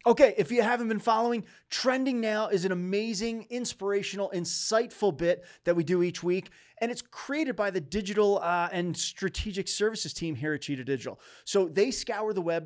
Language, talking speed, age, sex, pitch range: English, 185 wpm, 30-49, male, 160-210 Hz